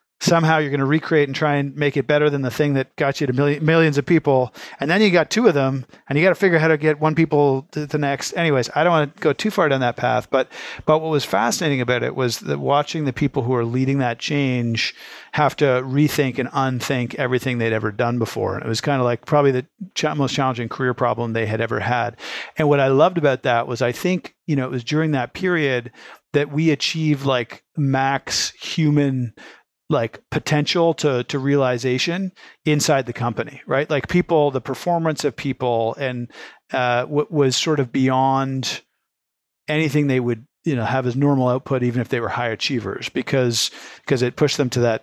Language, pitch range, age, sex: English, 125-150 Hz, 40-59, male